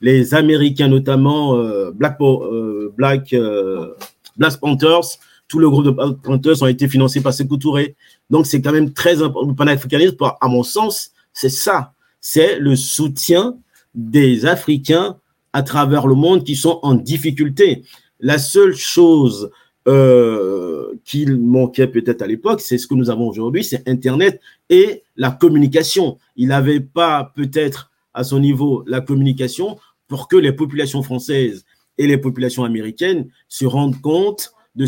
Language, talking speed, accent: French, 150 wpm, French